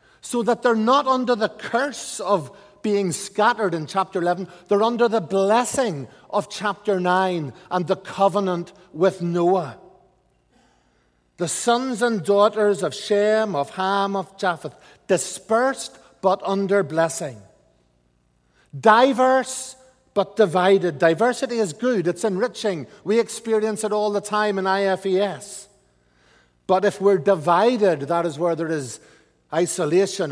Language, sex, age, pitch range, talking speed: English, male, 60-79, 170-215 Hz, 130 wpm